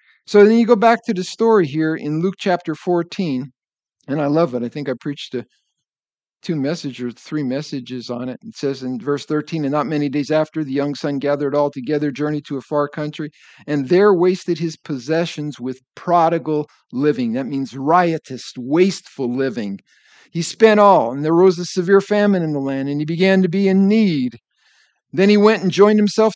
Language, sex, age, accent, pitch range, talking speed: English, male, 50-69, American, 145-205 Hz, 200 wpm